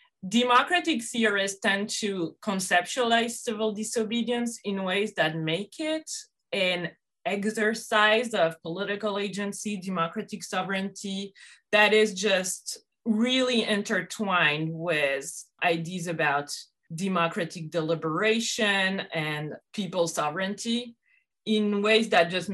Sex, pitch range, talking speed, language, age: female, 160-205 Hz, 95 wpm, English, 20-39